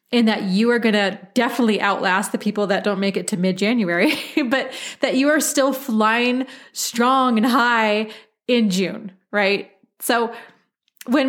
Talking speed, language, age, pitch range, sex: 155 wpm, English, 30-49, 195-255 Hz, female